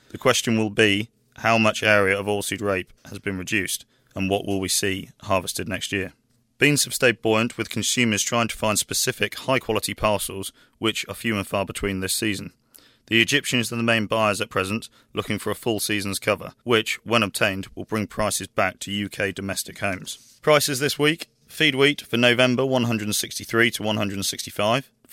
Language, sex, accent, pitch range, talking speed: English, male, British, 100-120 Hz, 180 wpm